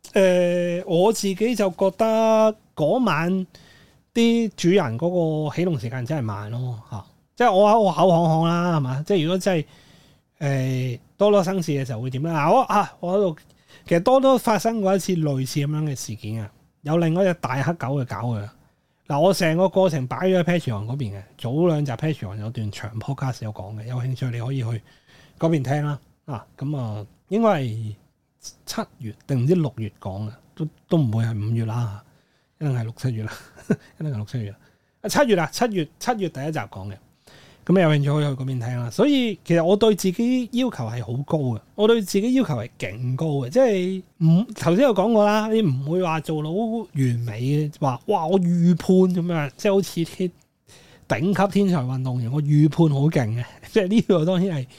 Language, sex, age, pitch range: Chinese, male, 30-49, 130-190 Hz